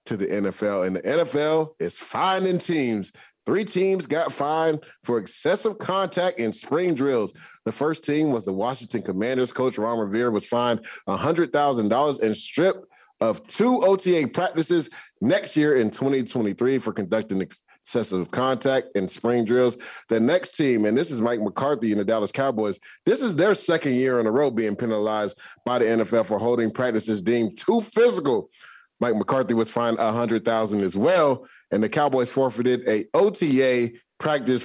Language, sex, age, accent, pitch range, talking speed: English, male, 30-49, American, 110-145 Hz, 165 wpm